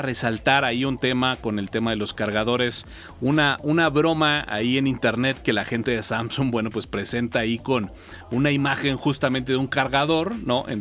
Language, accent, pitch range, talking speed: Spanish, Mexican, 115-140 Hz, 190 wpm